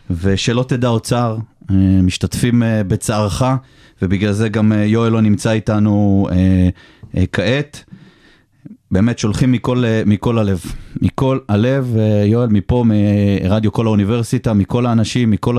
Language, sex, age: Hebrew, male, 30-49